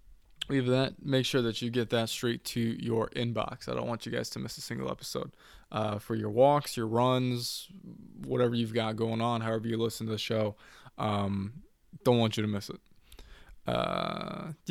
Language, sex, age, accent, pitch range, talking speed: English, male, 20-39, American, 110-130 Hz, 190 wpm